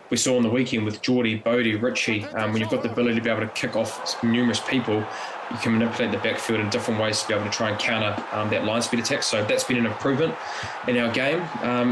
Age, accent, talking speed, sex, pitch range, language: 20-39, Australian, 260 wpm, male, 110-125 Hz, English